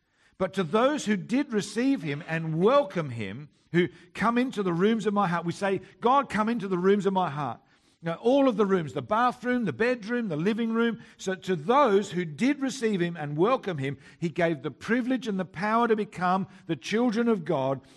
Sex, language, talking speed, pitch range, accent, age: male, English, 205 wpm, 145-215 Hz, Australian, 50-69